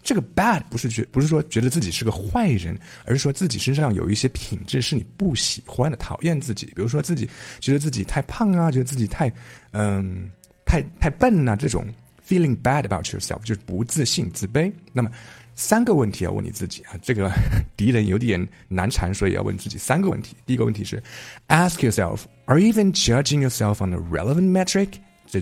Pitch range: 100-145 Hz